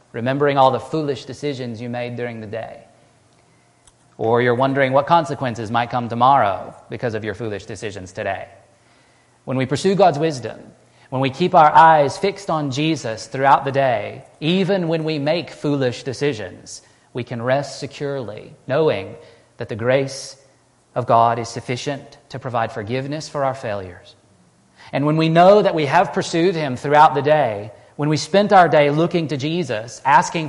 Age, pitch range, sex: 40-59, 120-150 Hz, male